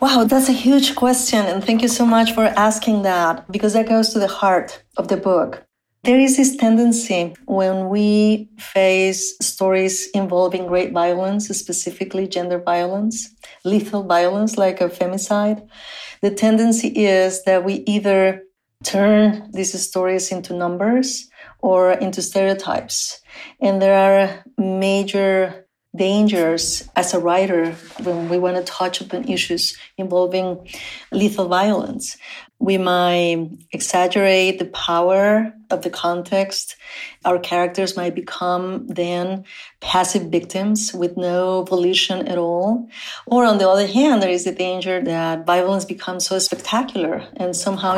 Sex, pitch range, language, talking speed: female, 180-215 Hz, English, 135 wpm